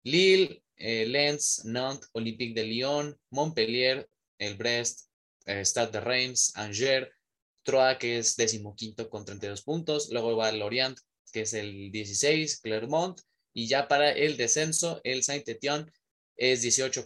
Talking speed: 135 wpm